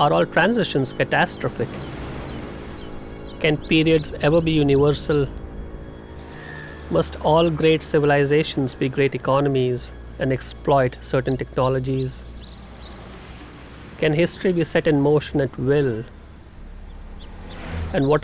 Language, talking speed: English, 100 wpm